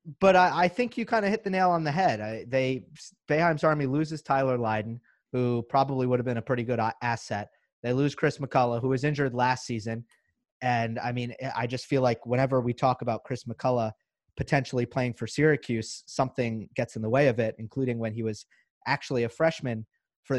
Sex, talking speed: male, 205 wpm